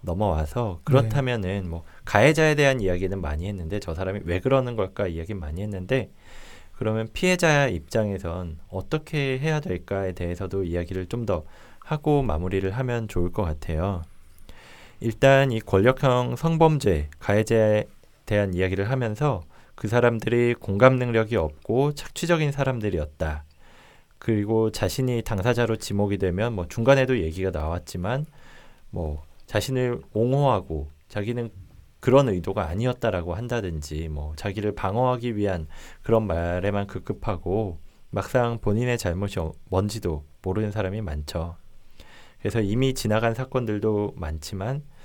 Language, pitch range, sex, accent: Korean, 85-120 Hz, male, native